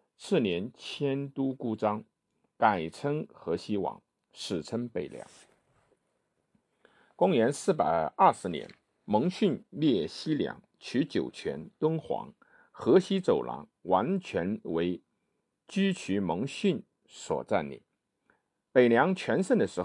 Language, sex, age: Chinese, male, 50-69